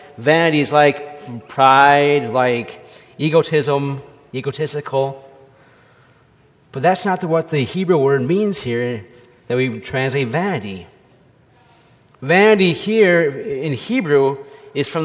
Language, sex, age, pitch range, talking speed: English, male, 30-49, 130-160 Hz, 105 wpm